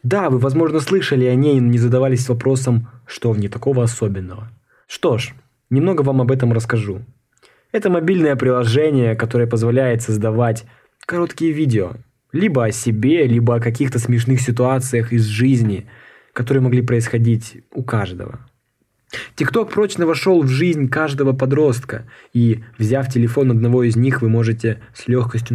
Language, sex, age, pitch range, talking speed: Russian, male, 20-39, 115-135 Hz, 145 wpm